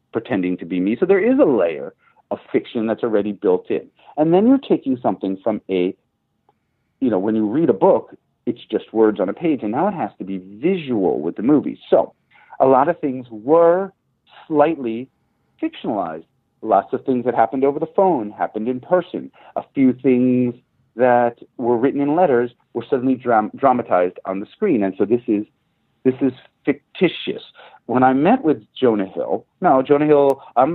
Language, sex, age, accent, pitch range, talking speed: English, male, 50-69, American, 110-165 Hz, 185 wpm